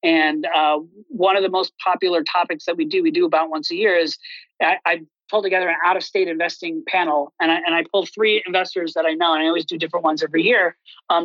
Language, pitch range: English, 165-210 Hz